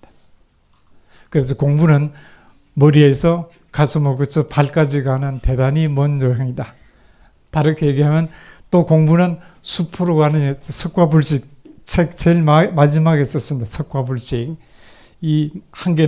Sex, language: male, Korean